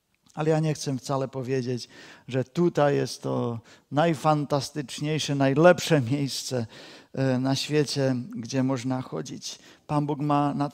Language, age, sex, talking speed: Czech, 50-69, male, 125 wpm